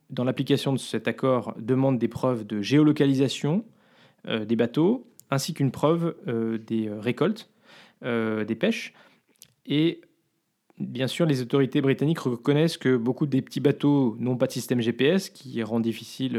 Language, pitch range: French, 120-155 Hz